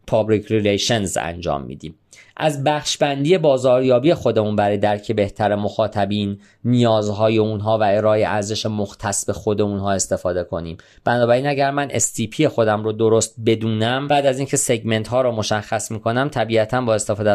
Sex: male